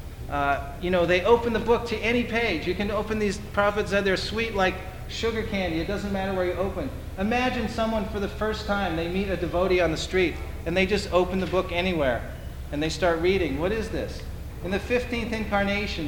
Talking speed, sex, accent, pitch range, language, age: 215 wpm, male, American, 175-210 Hz, English, 40-59